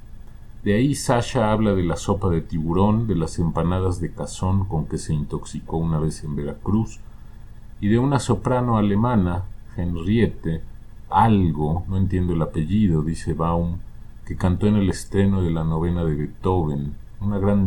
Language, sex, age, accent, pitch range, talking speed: Spanish, male, 40-59, Mexican, 80-105 Hz, 160 wpm